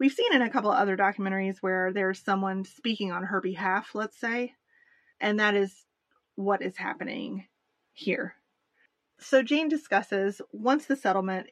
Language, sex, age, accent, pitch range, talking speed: English, female, 30-49, American, 190-225 Hz, 155 wpm